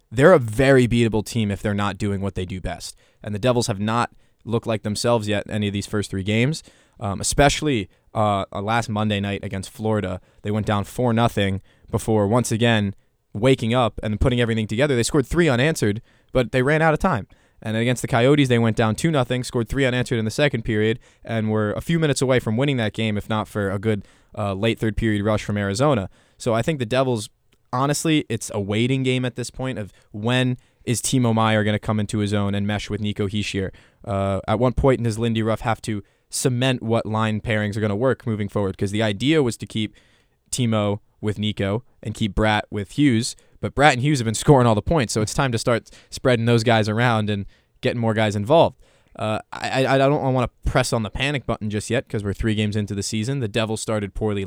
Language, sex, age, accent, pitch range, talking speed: English, male, 20-39, American, 105-125 Hz, 230 wpm